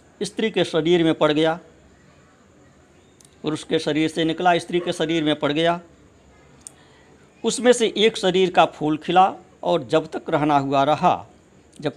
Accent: native